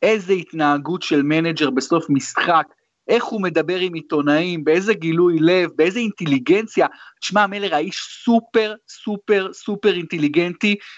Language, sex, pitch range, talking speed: Hebrew, male, 150-210 Hz, 125 wpm